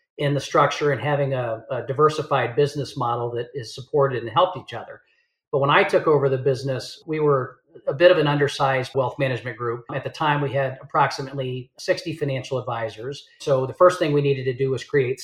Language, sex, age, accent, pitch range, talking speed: English, male, 40-59, American, 130-150 Hz, 210 wpm